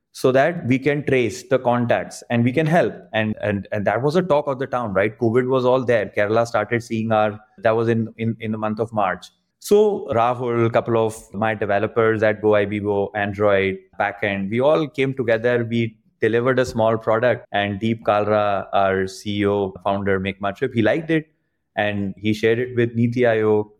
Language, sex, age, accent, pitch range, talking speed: English, male, 20-39, Indian, 105-130 Hz, 190 wpm